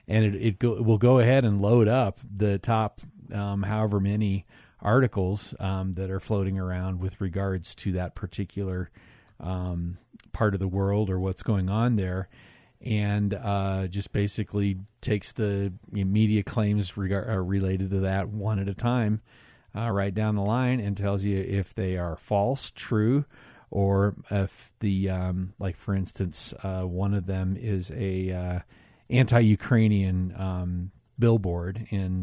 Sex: male